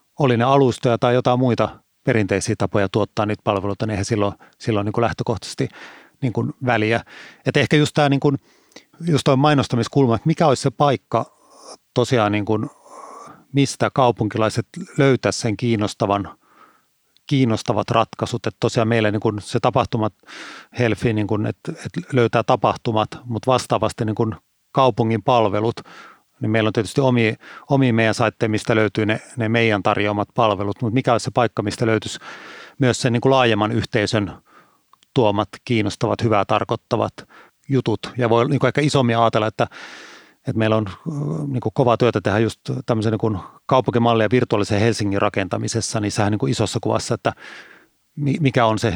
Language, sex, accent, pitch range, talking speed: Finnish, male, native, 110-130 Hz, 140 wpm